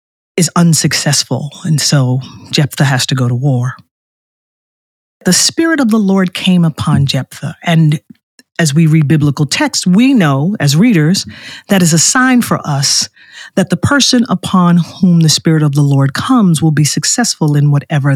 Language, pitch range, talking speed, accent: English, 145-195 Hz, 165 wpm, American